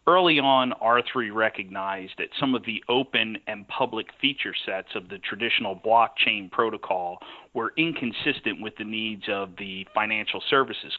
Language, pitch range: English, 105-125 Hz